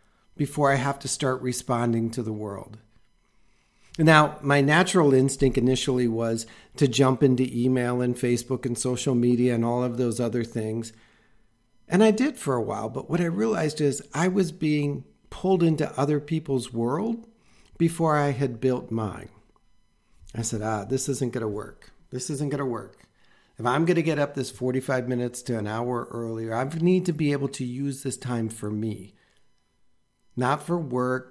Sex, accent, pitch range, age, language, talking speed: male, American, 115-145 Hz, 50-69, English, 180 wpm